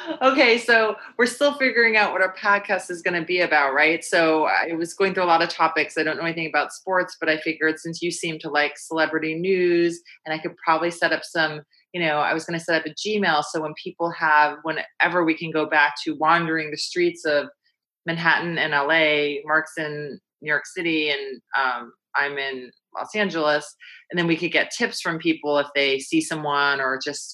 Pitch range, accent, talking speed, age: 145-180 Hz, American, 215 wpm, 30-49